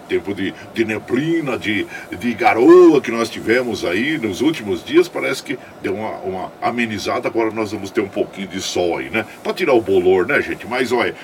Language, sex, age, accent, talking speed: Portuguese, male, 50-69, Brazilian, 205 wpm